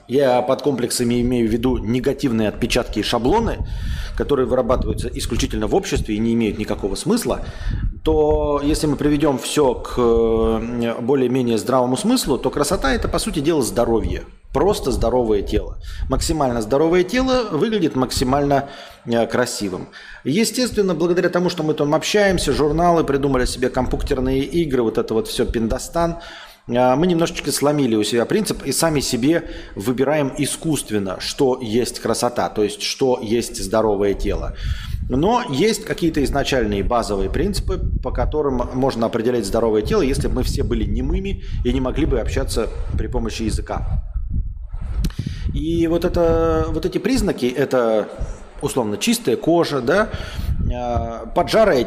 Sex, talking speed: male, 140 wpm